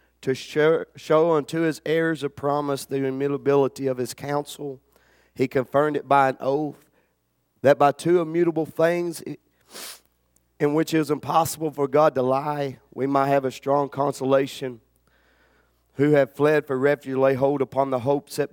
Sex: male